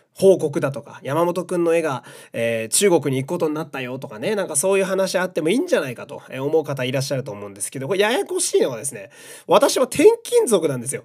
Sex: male